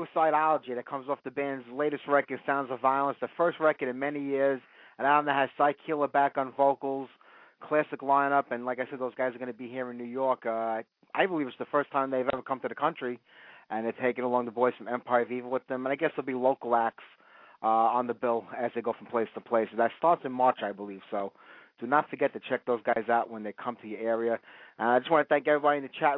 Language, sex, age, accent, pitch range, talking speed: English, male, 30-49, American, 125-140 Hz, 265 wpm